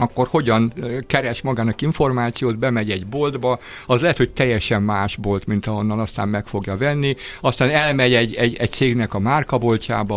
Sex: male